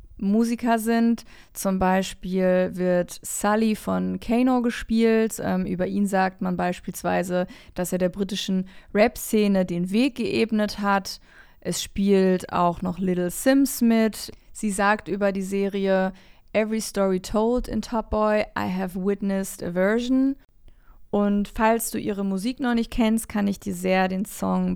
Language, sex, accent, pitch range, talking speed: German, female, German, 190-225 Hz, 150 wpm